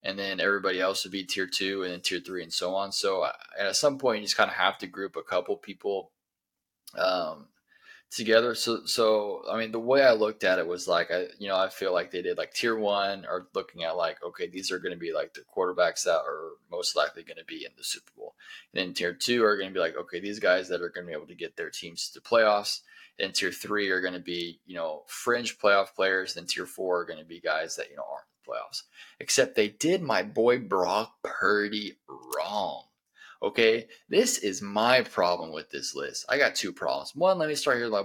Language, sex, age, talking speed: English, male, 20-39, 245 wpm